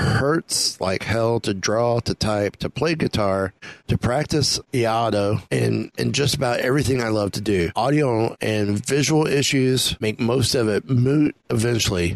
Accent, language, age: American, English, 30-49